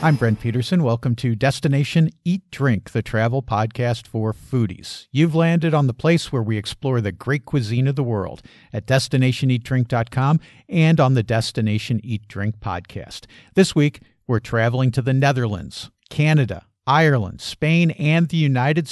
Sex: male